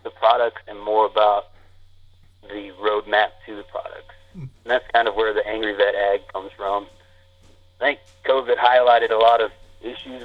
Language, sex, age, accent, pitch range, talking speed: English, male, 30-49, American, 90-120 Hz, 170 wpm